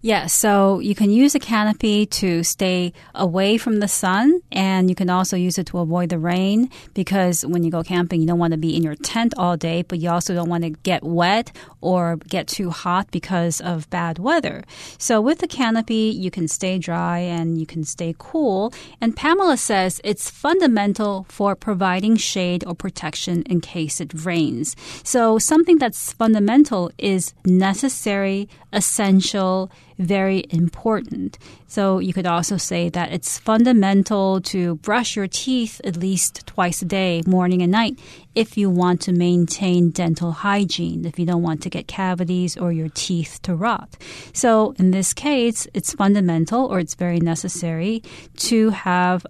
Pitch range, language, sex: 170-210 Hz, Chinese, female